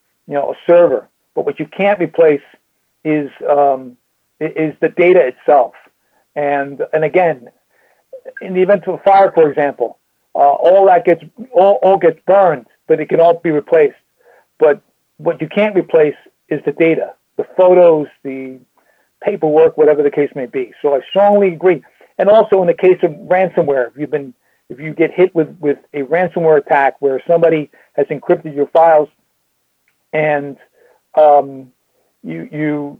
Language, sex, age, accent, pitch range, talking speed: English, male, 40-59, American, 145-185 Hz, 160 wpm